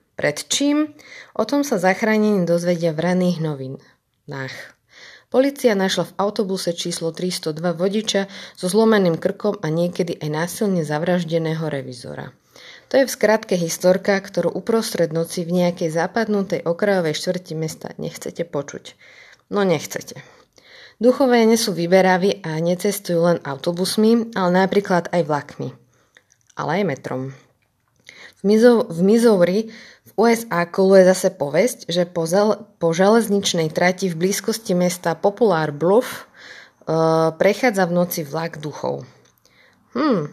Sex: female